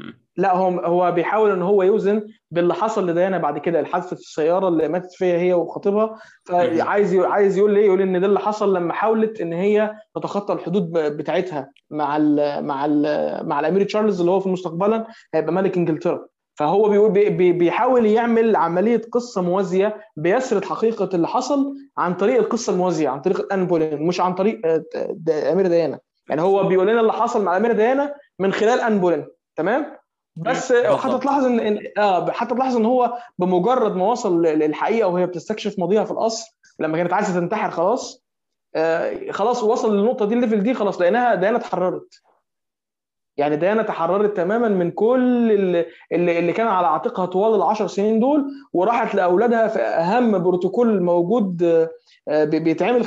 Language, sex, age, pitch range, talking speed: Arabic, male, 20-39, 175-230 Hz, 165 wpm